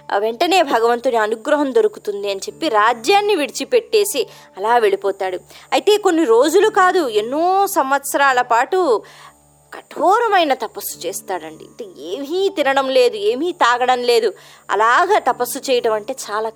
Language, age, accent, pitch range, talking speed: Telugu, 20-39, native, 255-385 Hz, 115 wpm